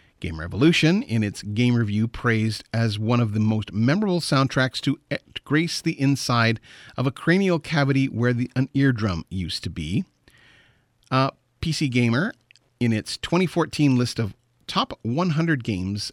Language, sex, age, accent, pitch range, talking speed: English, male, 40-59, American, 115-150 Hz, 145 wpm